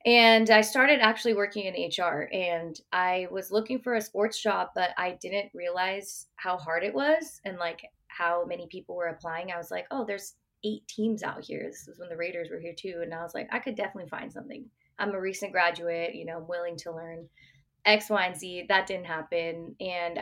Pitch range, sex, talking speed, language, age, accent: 170-215 Hz, female, 220 wpm, English, 20-39, American